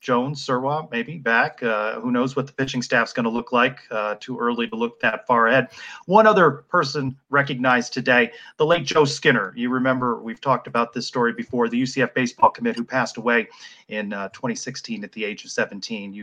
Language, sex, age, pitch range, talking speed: English, male, 30-49, 120-160 Hz, 205 wpm